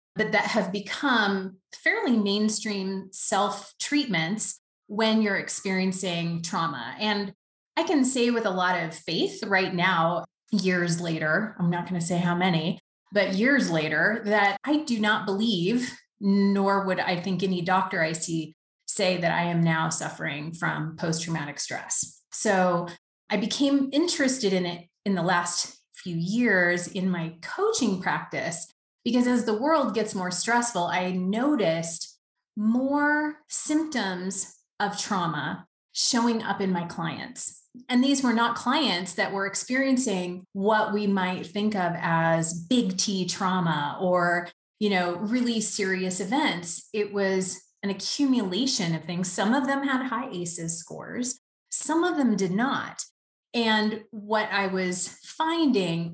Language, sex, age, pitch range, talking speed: English, female, 30-49, 175-225 Hz, 145 wpm